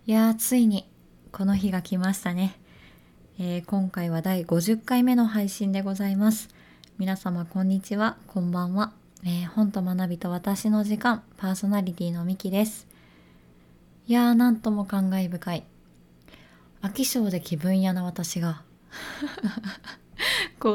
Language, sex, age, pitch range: Japanese, female, 20-39, 170-205 Hz